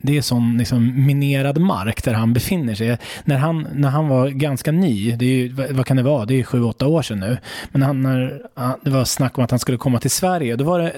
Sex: male